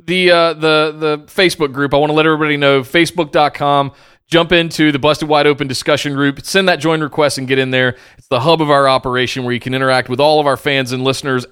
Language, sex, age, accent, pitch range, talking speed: English, male, 30-49, American, 135-180 Hz, 240 wpm